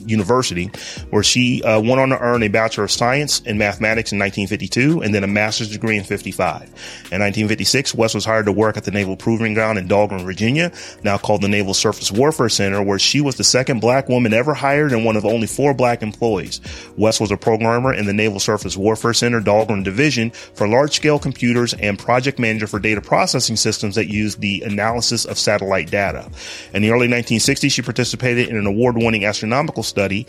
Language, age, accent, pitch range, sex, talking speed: English, 30-49, American, 105-125 Hz, male, 200 wpm